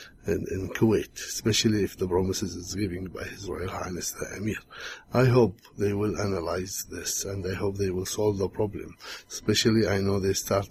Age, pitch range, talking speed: 60-79, 100-115 Hz, 180 wpm